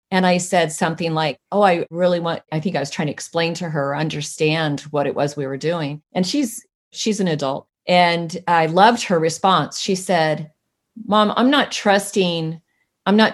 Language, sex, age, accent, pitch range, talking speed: English, female, 40-59, American, 160-195 Hz, 195 wpm